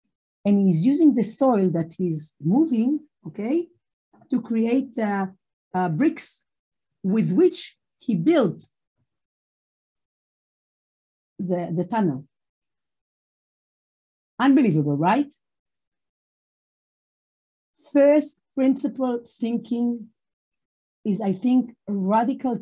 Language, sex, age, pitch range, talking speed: English, female, 50-69, 185-250 Hz, 85 wpm